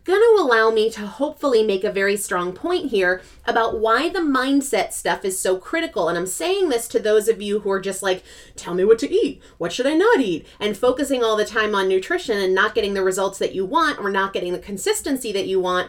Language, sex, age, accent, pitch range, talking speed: English, female, 30-49, American, 195-320 Hz, 245 wpm